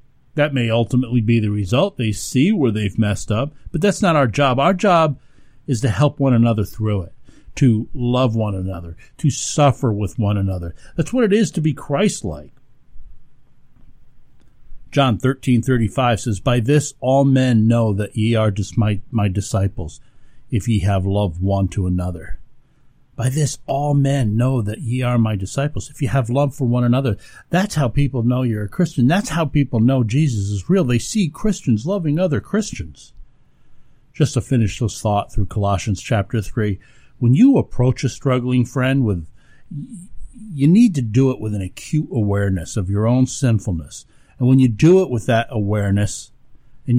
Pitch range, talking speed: 105-140 Hz, 180 wpm